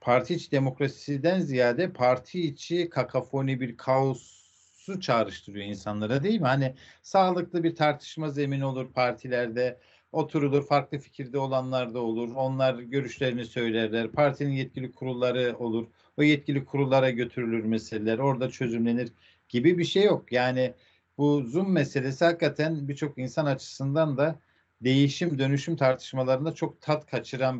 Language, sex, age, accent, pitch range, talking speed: Turkish, male, 50-69, native, 115-150 Hz, 130 wpm